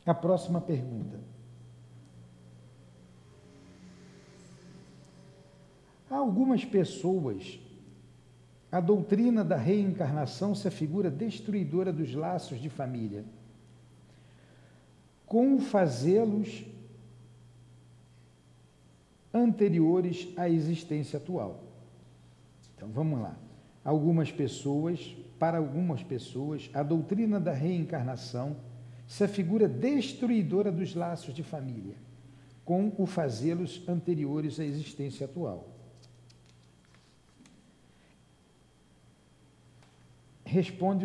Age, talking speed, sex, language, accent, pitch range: 60-79, 75 wpm, male, Portuguese, Brazilian, 115-185 Hz